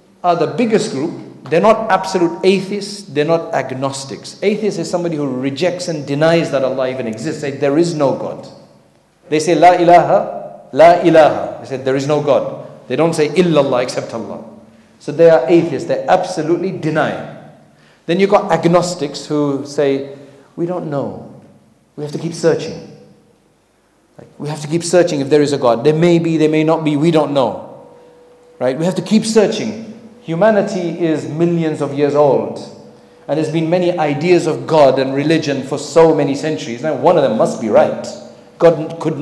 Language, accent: English, South African